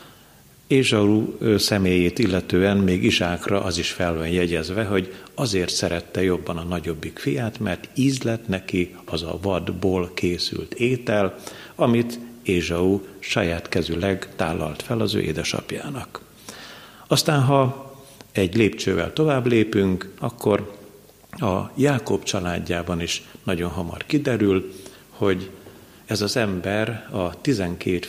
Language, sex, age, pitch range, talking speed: Hungarian, male, 50-69, 85-110 Hz, 115 wpm